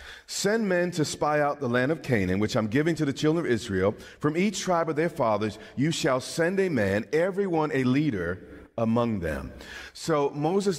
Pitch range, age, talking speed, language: 115-155 Hz, 40-59, 195 wpm, English